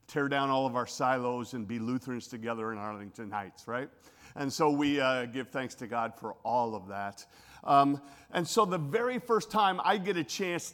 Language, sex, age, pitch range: English, male, 50-69, 120-205 Hz